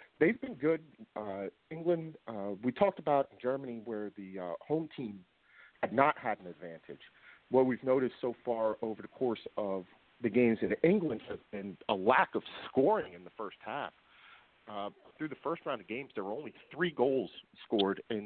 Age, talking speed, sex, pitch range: 40-59, 185 wpm, male, 105-130 Hz